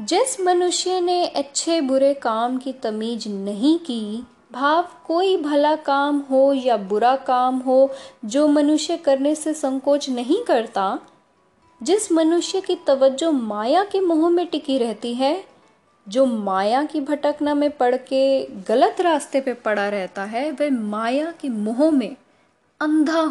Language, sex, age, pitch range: Hindi, female, 10-29, 230-305 Hz